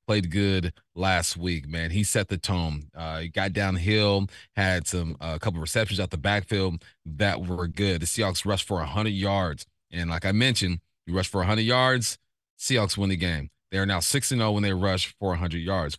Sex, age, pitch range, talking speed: male, 30-49, 90-110 Hz, 210 wpm